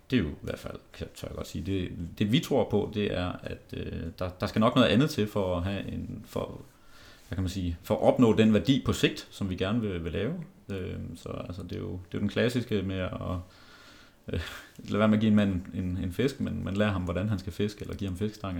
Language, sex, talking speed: Danish, male, 270 wpm